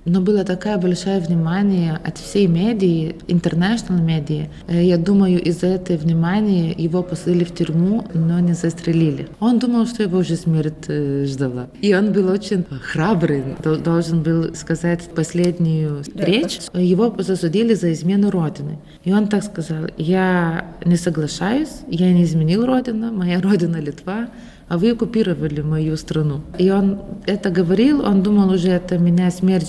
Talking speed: 150 wpm